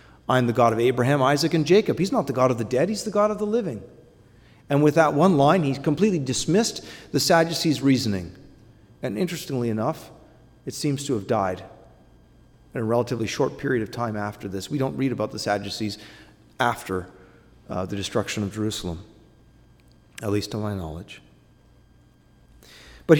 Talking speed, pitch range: 175 wpm, 110-150 Hz